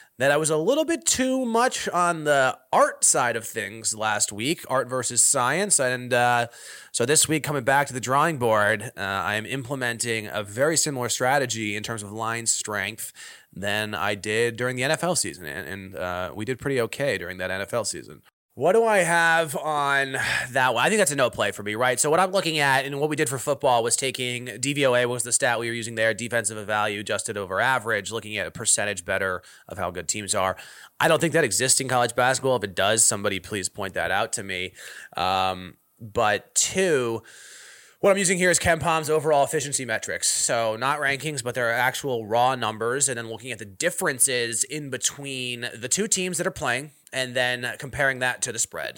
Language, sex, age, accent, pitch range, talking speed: English, male, 20-39, American, 110-145 Hz, 210 wpm